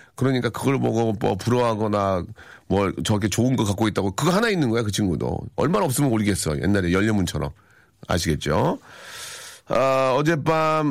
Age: 40-59